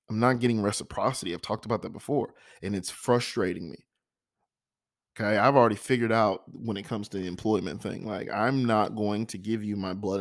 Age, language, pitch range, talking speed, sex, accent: 20-39, English, 100-125 Hz, 200 wpm, male, American